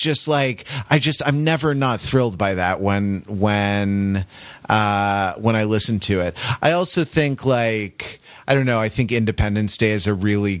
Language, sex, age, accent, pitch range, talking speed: English, male, 30-49, American, 100-125 Hz, 180 wpm